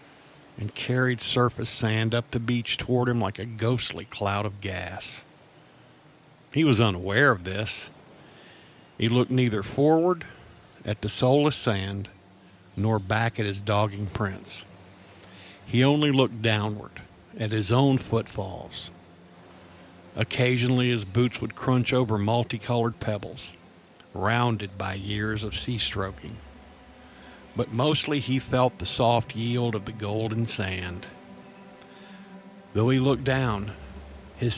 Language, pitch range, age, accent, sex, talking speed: English, 100-125 Hz, 50-69, American, male, 125 wpm